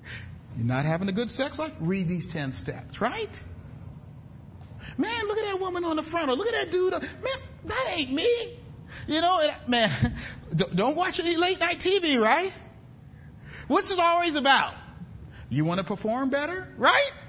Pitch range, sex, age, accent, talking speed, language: 235-375 Hz, male, 40-59, American, 175 wpm, English